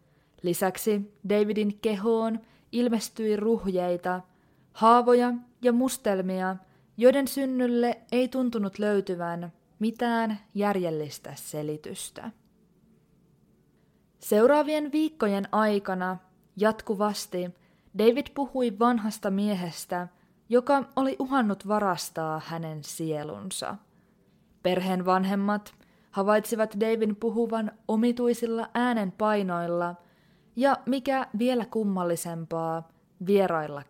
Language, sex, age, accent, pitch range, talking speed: Finnish, female, 20-39, native, 180-230 Hz, 75 wpm